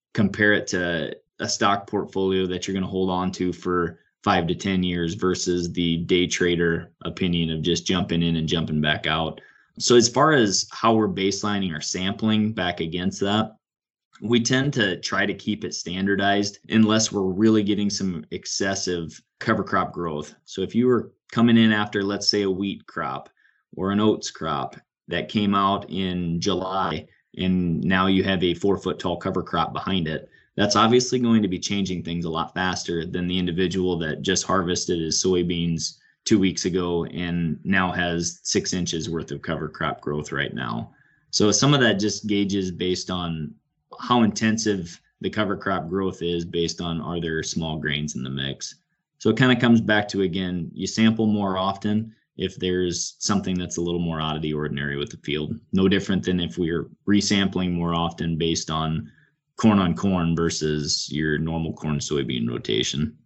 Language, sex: English, male